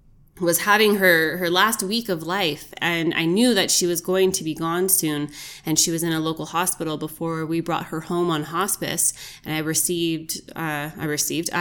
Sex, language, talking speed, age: female, English, 200 wpm, 20-39